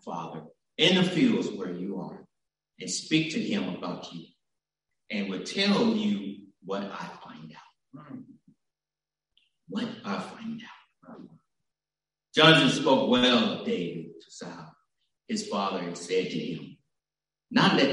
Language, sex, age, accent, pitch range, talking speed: English, male, 60-79, American, 210-245 Hz, 135 wpm